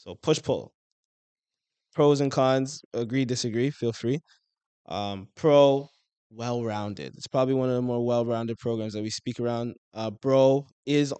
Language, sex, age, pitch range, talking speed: English, male, 20-39, 105-125 Hz, 150 wpm